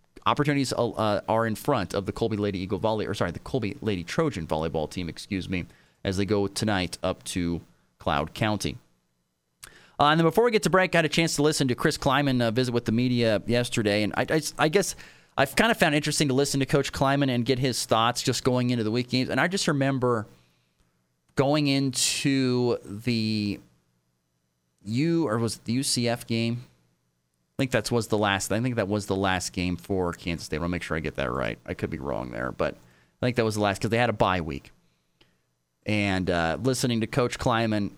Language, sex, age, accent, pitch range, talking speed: English, male, 30-49, American, 95-130 Hz, 220 wpm